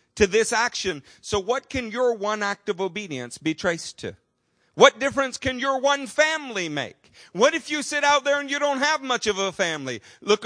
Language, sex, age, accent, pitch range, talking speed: English, male, 50-69, American, 185-260 Hz, 205 wpm